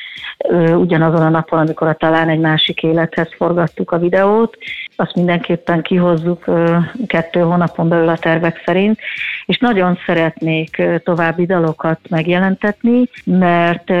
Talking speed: 120 wpm